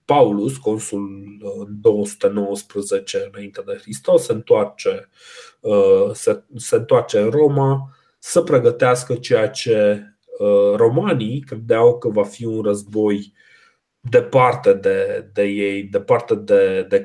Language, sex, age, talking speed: Romanian, male, 30-49, 100 wpm